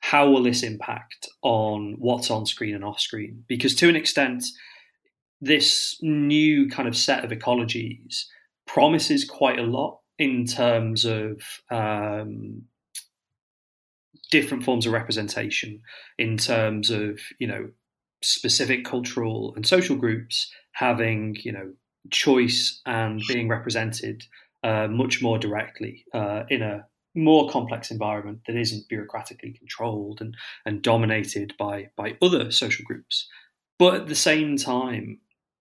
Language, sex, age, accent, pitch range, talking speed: English, male, 30-49, British, 110-130 Hz, 130 wpm